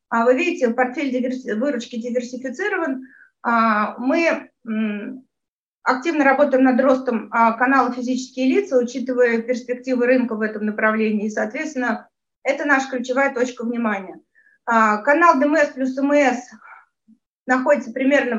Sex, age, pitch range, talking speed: female, 30-49, 240-275 Hz, 110 wpm